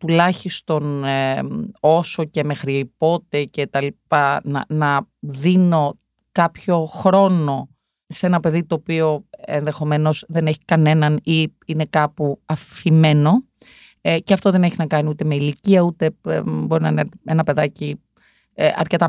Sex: female